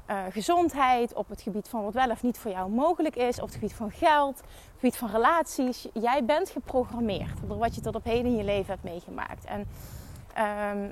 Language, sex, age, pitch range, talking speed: Dutch, female, 30-49, 205-260 Hz, 220 wpm